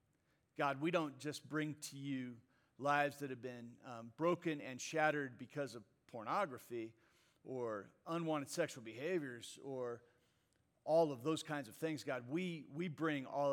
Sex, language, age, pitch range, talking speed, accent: male, English, 50-69, 120-145 Hz, 150 wpm, American